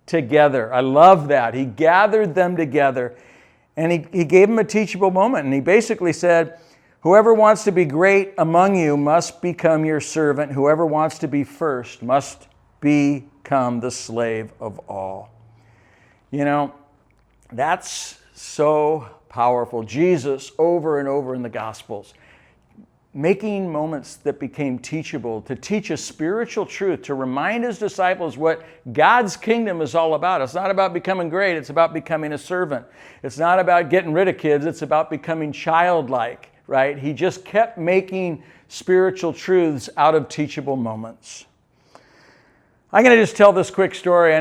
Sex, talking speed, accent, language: male, 155 wpm, American, English